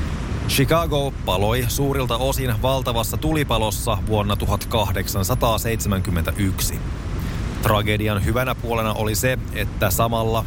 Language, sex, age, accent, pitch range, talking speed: Finnish, male, 30-49, native, 100-125 Hz, 85 wpm